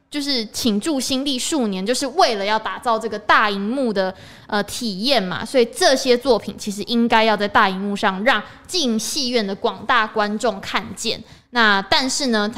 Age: 20-39